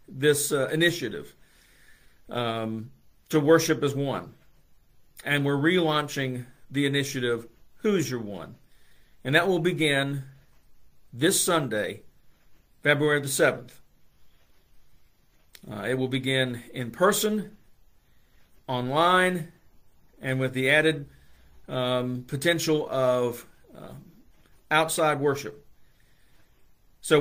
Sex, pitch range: male, 125-170 Hz